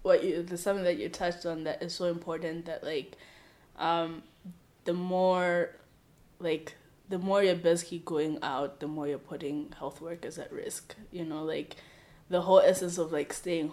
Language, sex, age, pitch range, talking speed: English, female, 20-39, 160-175 Hz, 180 wpm